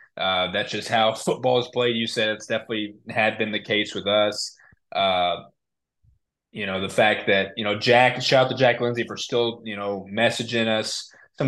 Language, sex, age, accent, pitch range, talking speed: English, male, 20-39, American, 100-120 Hz, 200 wpm